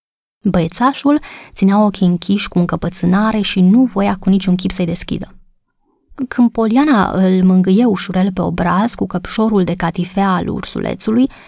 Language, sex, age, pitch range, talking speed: Romanian, female, 20-39, 185-210 Hz, 140 wpm